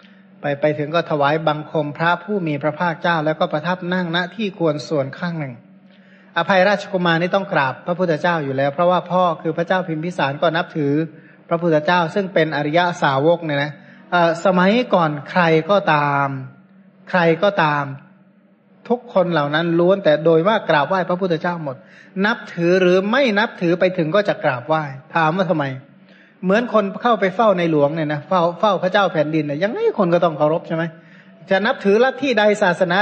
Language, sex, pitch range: Thai, male, 155-195 Hz